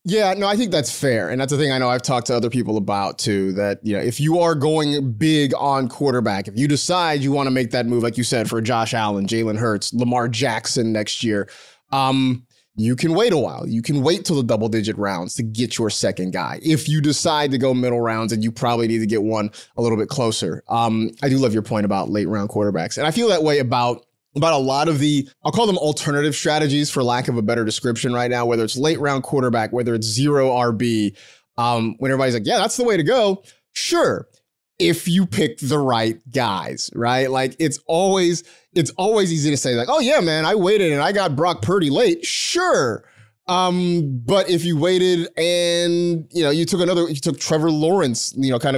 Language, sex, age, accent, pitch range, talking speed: English, male, 30-49, American, 115-155 Hz, 230 wpm